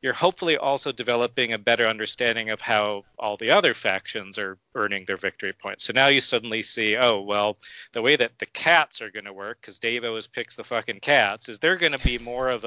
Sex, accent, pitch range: male, American, 110-130 Hz